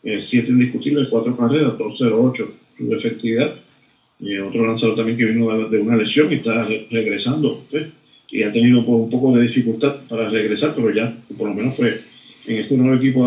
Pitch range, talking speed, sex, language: 115-130 Hz, 205 wpm, male, Spanish